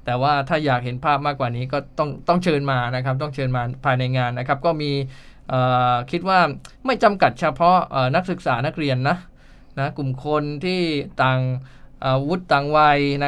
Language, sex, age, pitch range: English, male, 10-29, 130-155 Hz